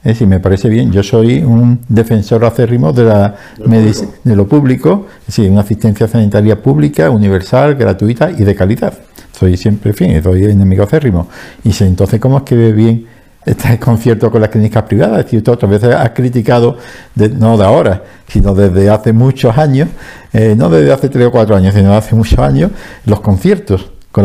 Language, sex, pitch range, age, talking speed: Spanish, male, 100-120 Hz, 50-69, 195 wpm